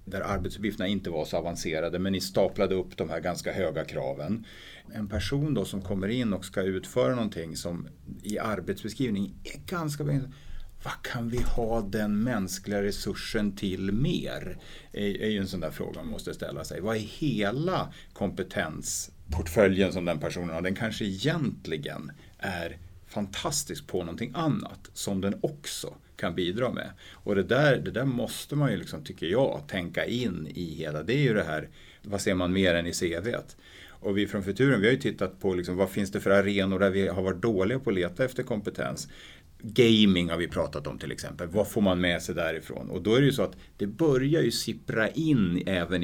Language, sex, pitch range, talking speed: Swedish, male, 90-110 Hz, 195 wpm